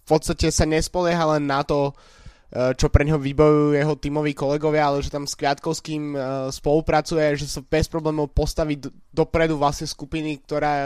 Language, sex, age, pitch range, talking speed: Slovak, male, 20-39, 145-155 Hz, 160 wpm